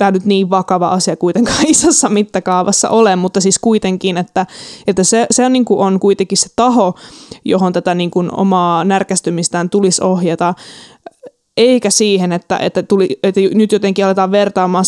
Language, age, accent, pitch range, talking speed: Finnish, 20-39, native, 180-205 Hz, 165 wpm